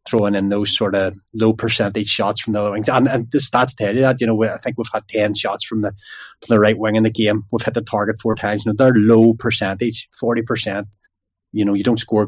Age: 20-39